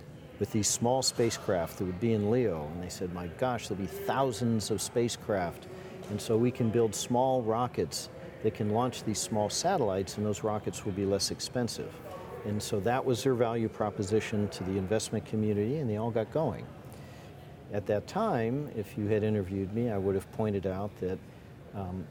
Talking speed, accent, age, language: 190 wpm, American, 50-69, English